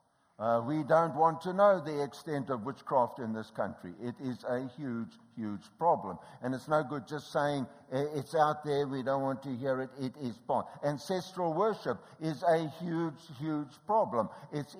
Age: 60-79